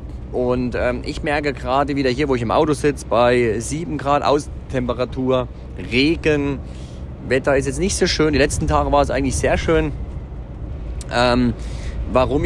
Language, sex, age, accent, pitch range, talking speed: German, male, 40-59, German, 90-140 Hz, 160 wpm